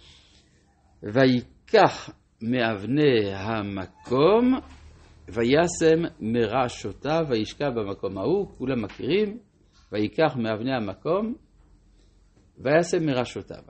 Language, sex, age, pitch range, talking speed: Hebrew, male, 60-79, 95-145 Hz, 65 wpm